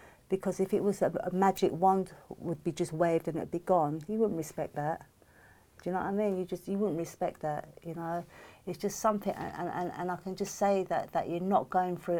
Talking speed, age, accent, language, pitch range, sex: 270 wpm, 50-69, British, English, 160-190 Hz, female